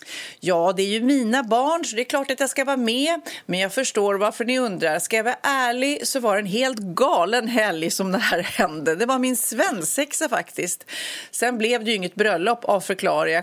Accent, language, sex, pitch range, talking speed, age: native, Swedish, female, 185-260 Hz, 220 wpm, 30-49